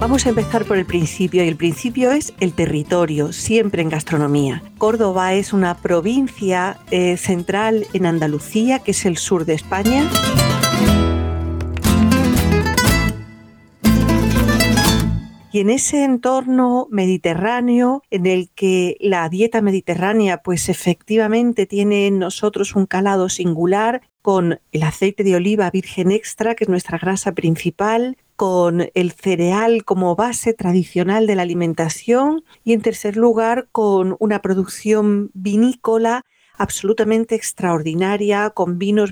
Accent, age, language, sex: Spanish, 40-59, Spanish, female